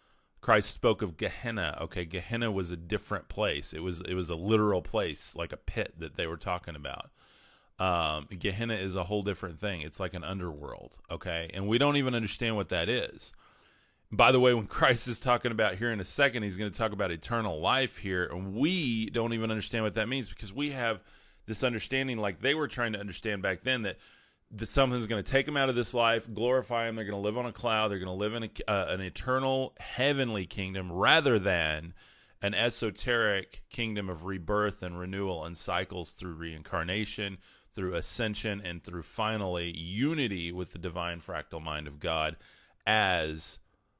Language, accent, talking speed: English, American, 195 wpm